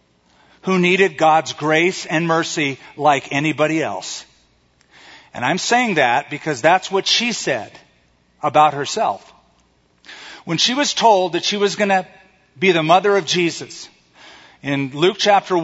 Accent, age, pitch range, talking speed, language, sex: American, 40-59, 135-195 Hz, 140 wpm, English, male